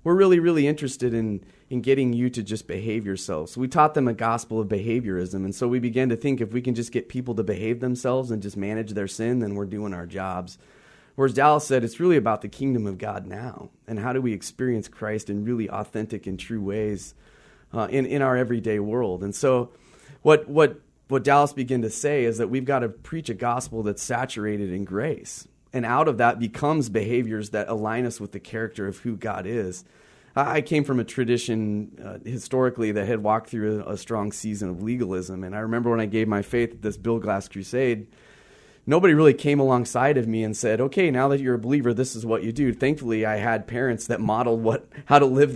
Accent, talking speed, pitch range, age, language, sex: American, 225 wpm, 105-130 Hz, 30-49, English, male